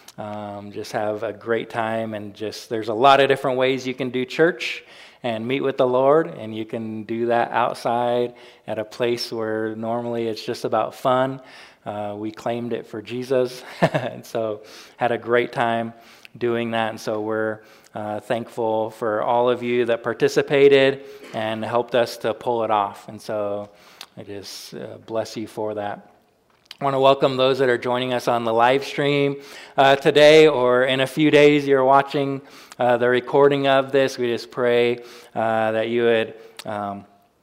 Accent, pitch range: American, 110-135 Hz